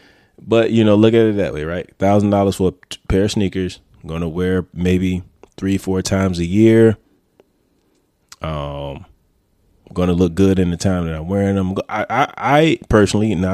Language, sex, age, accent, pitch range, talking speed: English, male, 20-39, American, 85-100 Hz, 190 wpm